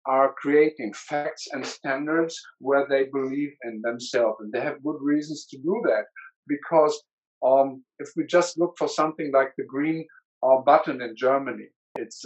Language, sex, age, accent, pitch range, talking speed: English, male, 50-69, German, 130-165 Hz, 165 wpm